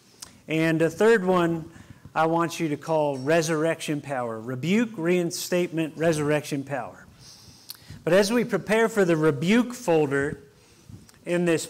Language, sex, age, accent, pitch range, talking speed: English, male, 40-59, American, 150-180 Hz, 130 wpm